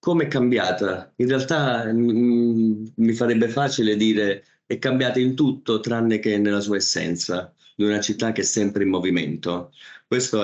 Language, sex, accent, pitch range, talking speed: Italian, male, native, 90-110 Hz, 165 wpm